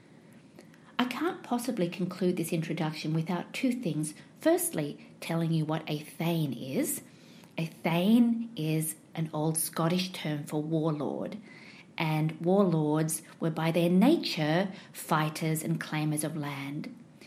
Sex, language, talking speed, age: female, English, 120 wpm, 40-59